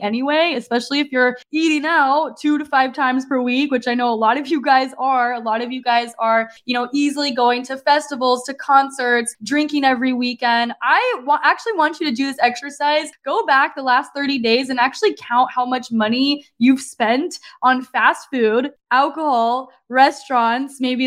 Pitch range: 235-290 Hz